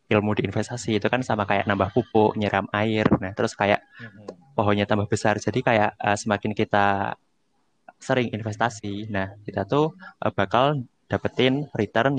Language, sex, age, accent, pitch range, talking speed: Indonesian, male, 20-39, native, 105-120 Hz, 150 wpm